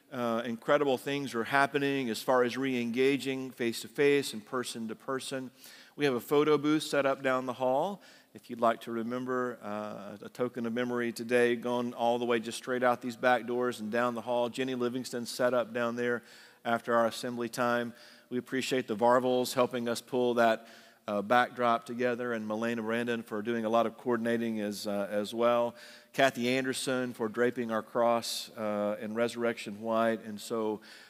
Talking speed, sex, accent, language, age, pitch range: 180 wpm, male, American, English, 40-59, 110-125 Hz